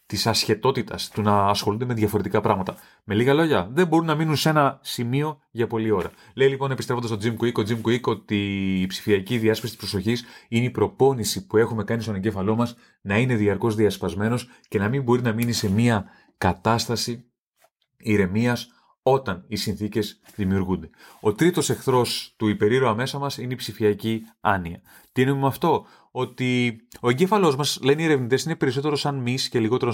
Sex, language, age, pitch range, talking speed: male, Greek, 30-49, 110-135 Hz, 175 wpm